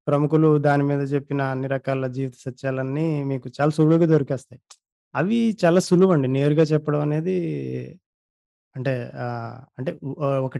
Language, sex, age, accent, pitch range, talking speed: Telugu, male, 20-39, native, 130-165 Hz, 120 wpm